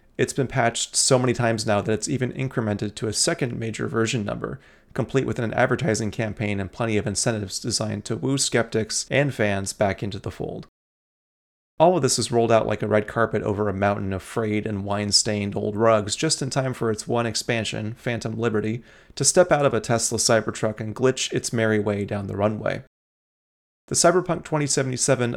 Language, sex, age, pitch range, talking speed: English, male, 30-49, 105-130 Hz, 195 wpm